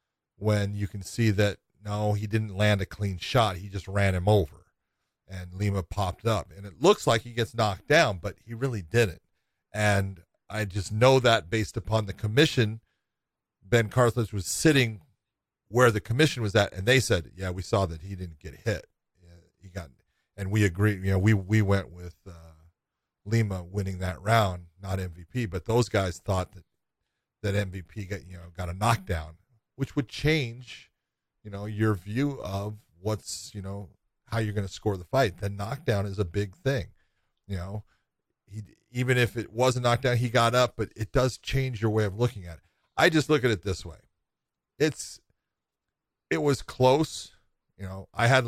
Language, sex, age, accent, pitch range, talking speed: English, male, 40-59, American, 95-120 Hz, 190 wpm